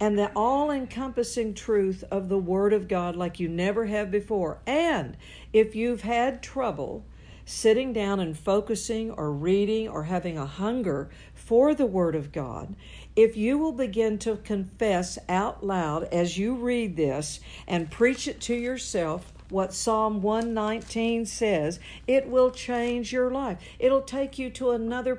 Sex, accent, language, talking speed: female, American, English, 155 wpm